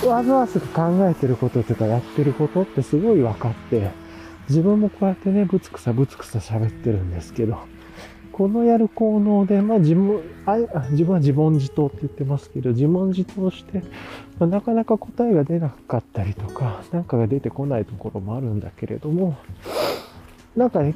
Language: Japanese